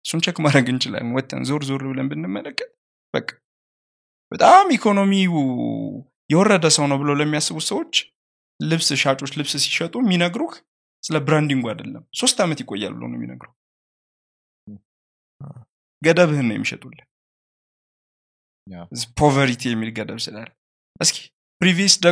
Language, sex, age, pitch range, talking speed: English, male, 20-39, 135-195 Hz, 40 wpm